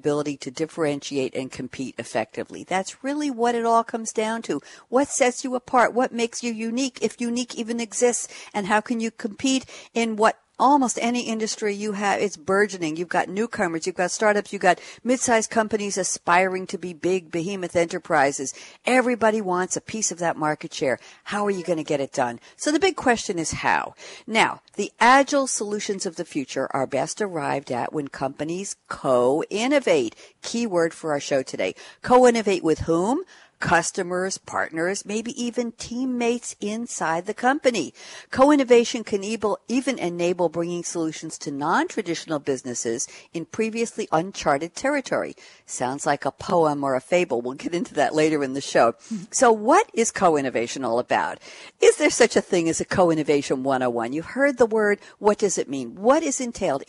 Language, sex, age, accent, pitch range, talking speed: English, female, 60-79, American, 160-235 Hz, 170 wpm